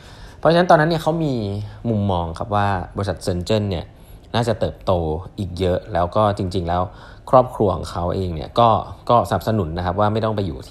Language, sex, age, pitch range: Thai, male, 20-39, 90-115 Hz